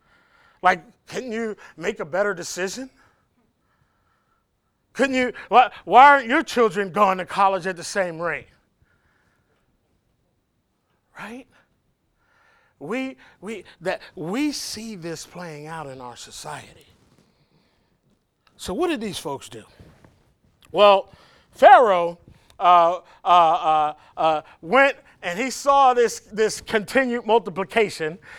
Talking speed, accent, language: 110 wpm, American, English